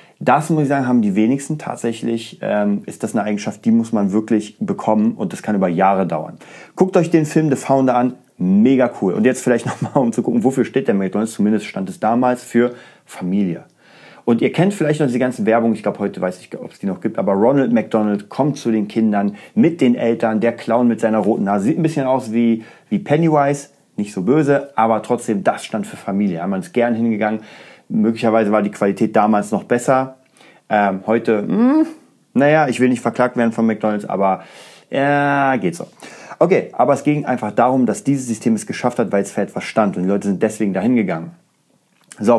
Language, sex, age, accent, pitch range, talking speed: German, male, 30-49, German, 110-145 Hz, 220 wpm